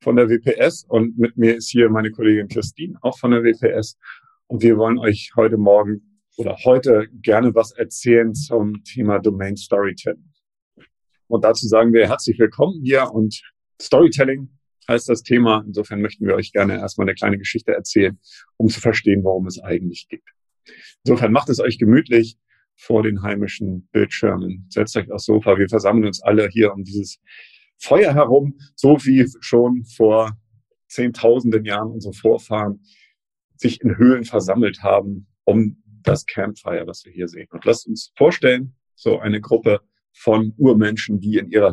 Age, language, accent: 40-59, German, German